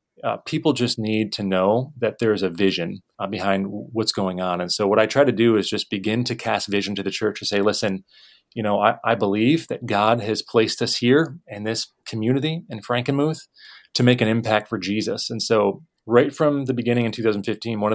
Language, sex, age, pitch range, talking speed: English, male, 30-49, 105-120 Hz, 215 wpm